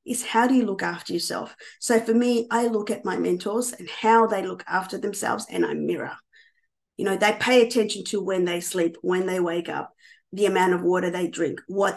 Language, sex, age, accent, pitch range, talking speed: English, female, 30-49, Australian, 190-235 Hz, 220 wpm